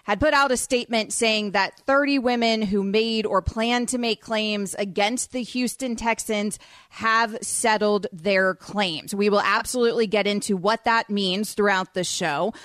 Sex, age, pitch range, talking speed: female, 30-49, 205-255 Hz, 165 wpm